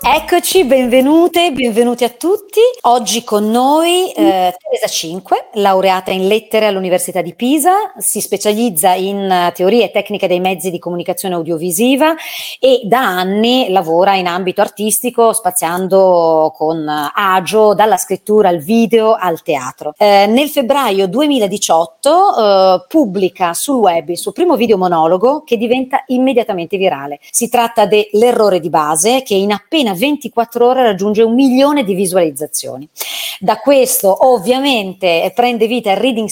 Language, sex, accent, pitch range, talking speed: Italian, female, native, 175-235 Hz, 135 wpm